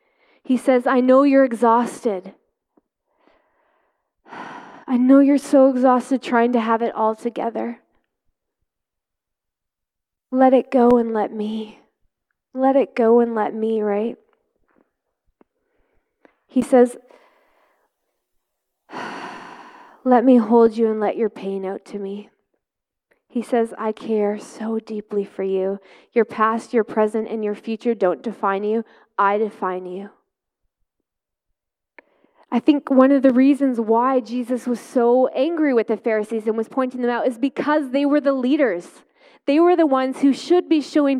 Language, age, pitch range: English, 20-39, 230-300 Hz